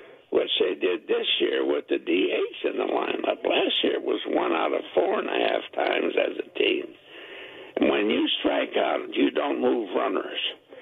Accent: American